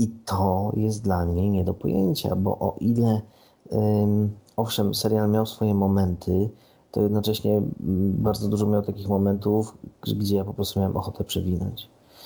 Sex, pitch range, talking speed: male, 95-105 Hz, 145 wpm